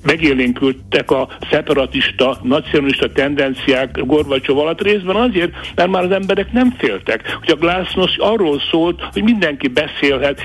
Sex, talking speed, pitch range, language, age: male, 130 wpm, 130-170 Hz, Hungarian, 60-79